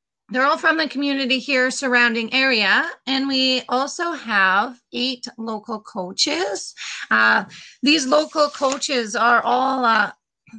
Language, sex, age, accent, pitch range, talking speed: English, female, 30-49, American, 225-270 Hz, 125 wpm